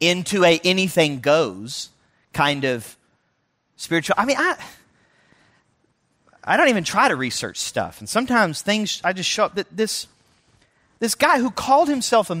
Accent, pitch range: American, 145-220 Hz